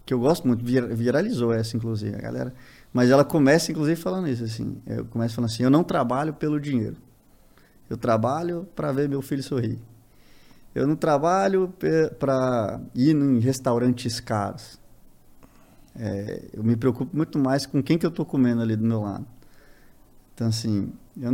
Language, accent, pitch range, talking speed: Portuguese, Brazilian, 115-155 Hz, 165 wpm